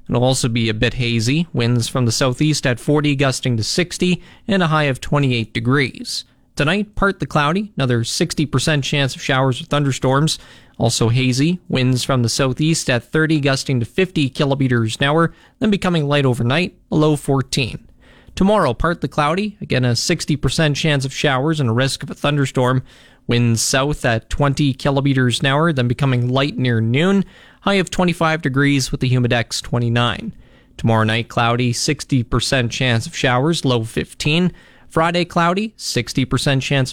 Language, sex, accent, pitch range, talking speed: English, male, American, 125-160 Hz, 165 wpm